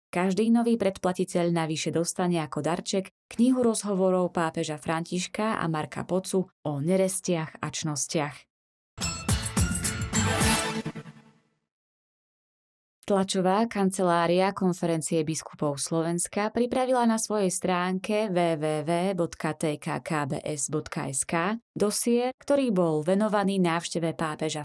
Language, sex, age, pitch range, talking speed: Slovak, female, 20-39, 160-200 Hz, 85 wpm